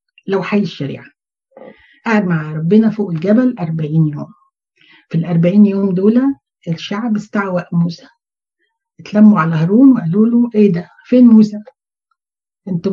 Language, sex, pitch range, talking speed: Arabic, female, 175-225 Hz, 115 wpm